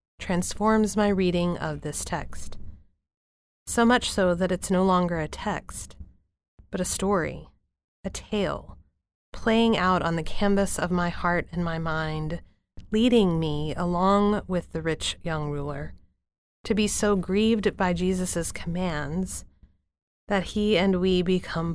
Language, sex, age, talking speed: English, female, 30-49, 140 wpm